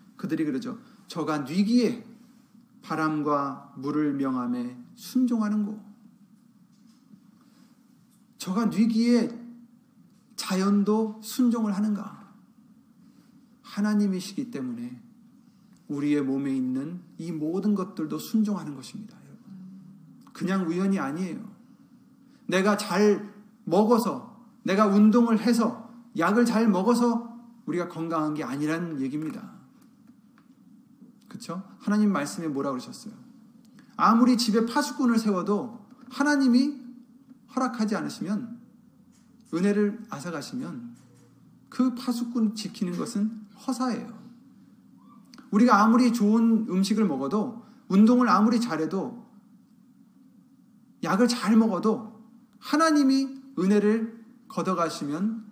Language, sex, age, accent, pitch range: Korean, male, 40-59, native, 205-240 Hz